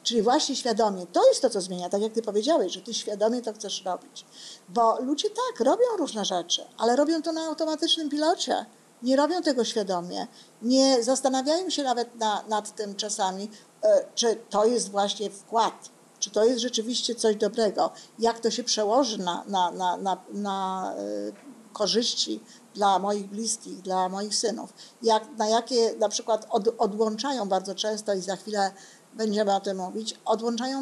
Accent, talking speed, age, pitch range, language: native, 155 wpm, 50-69, 205-245 Hz, Polish